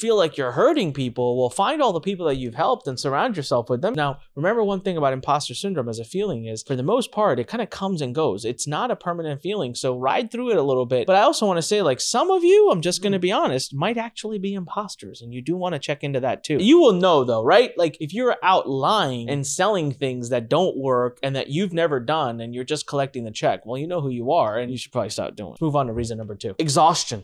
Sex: male